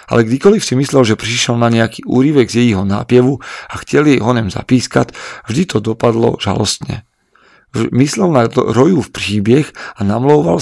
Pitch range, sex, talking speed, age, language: 115-130 Hz, male, 160 wpm, 40-59, Slovak